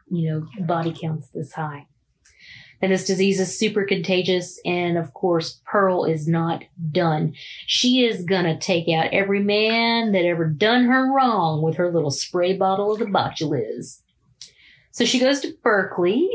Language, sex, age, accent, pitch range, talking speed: English, female, 30-49, American, 170-205 Hz, 165 wpm